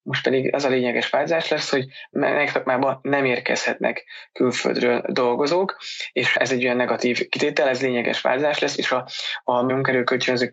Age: 20-39